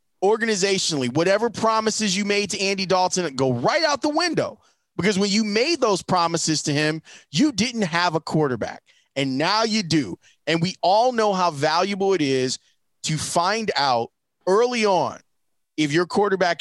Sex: male